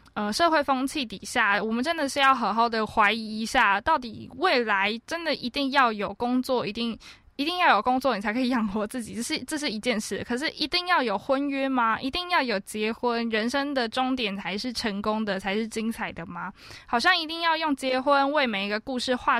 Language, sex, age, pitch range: Chinese, female, 20-39, 210-270 Hz